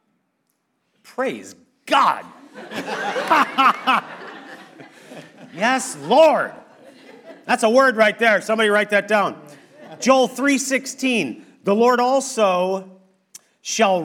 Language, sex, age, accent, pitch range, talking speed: English, male, 40-59, American, 175-240 Hz, 80 wpm